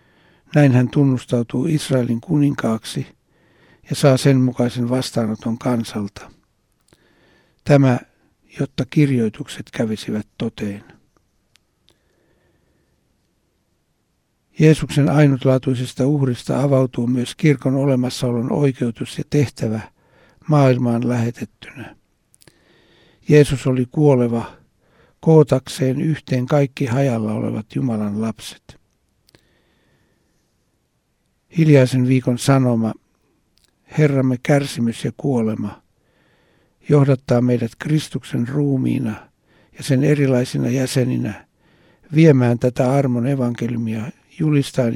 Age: 60-79